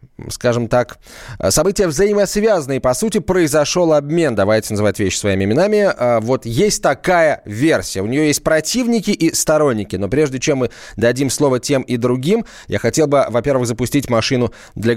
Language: Russian